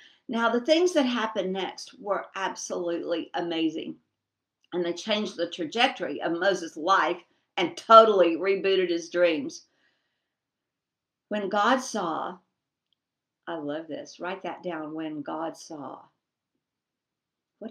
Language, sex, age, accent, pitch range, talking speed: English, female, 50-69, American, 170-230 Hz, 120 wpm